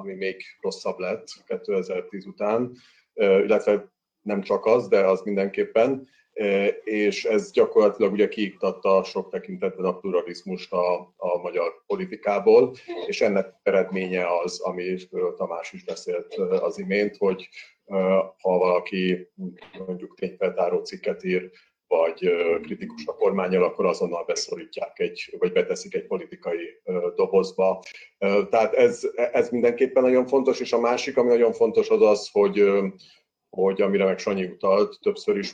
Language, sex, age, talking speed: Hungarian, male, 40-59, 130 wpm